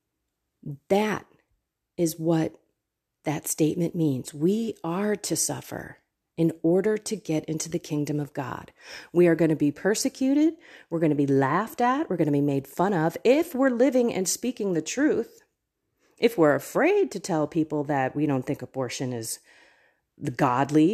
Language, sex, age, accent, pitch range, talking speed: English, female, 40-59, American, 150-235 Hz, 165 wpm